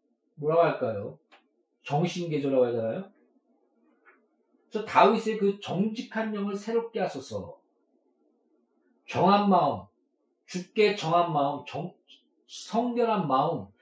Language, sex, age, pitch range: Korean, male, 40-59, 140-185 Hz